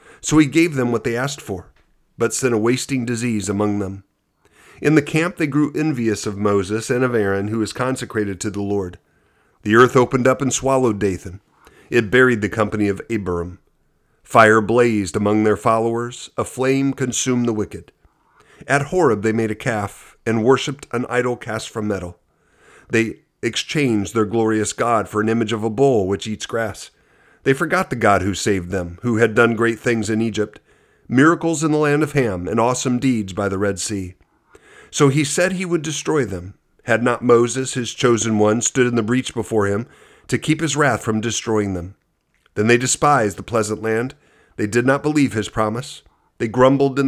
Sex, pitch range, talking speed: male, 105-130 Hz, 190 wpm